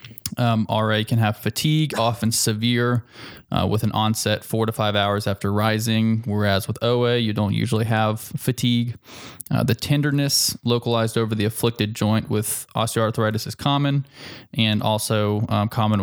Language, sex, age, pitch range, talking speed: English, male, 20-39, 105-120 Hz, 155 wpm